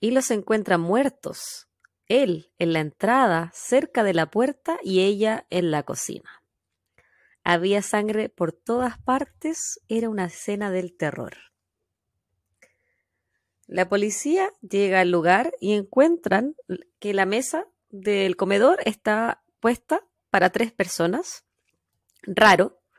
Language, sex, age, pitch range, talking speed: Spanish, female, 30-49, 175-245 Hz, 115 wpm